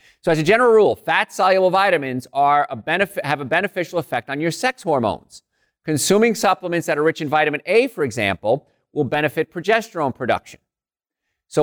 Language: English